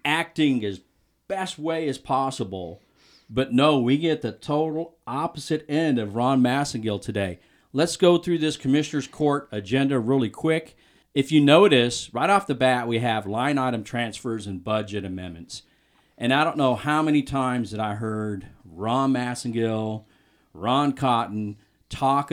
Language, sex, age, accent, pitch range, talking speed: English, male, 40-59, American, 115-155 Hz, 155 wpm